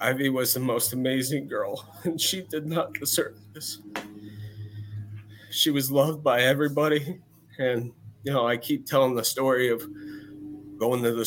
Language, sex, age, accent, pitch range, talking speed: English, male, 20-39, American, 105-120 Hz, 155 wpm